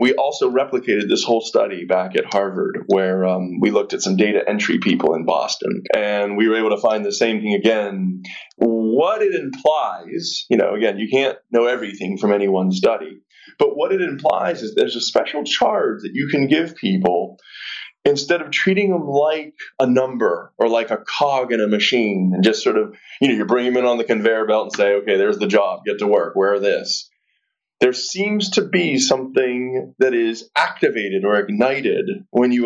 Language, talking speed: English, 200 wpm